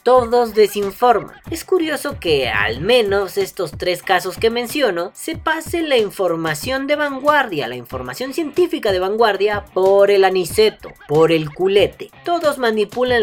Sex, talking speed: female, 140 wpm